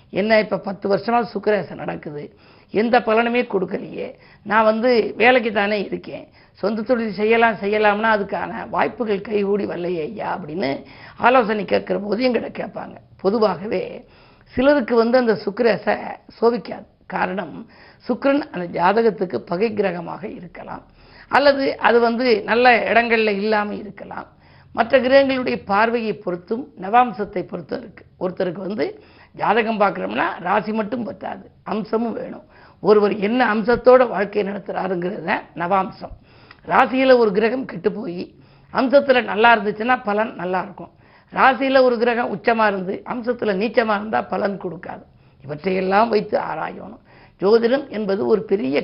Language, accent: Tamil, native